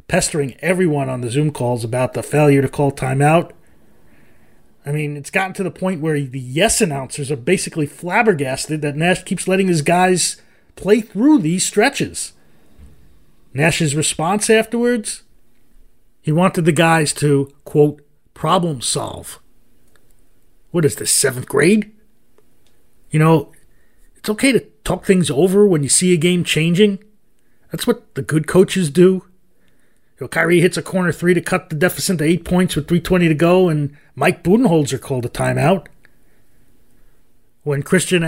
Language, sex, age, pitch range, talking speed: English, male, 30-49, 140-190 Hz, 150 wpm